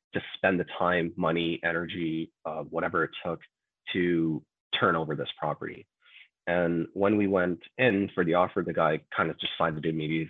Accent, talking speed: American, 185 wpm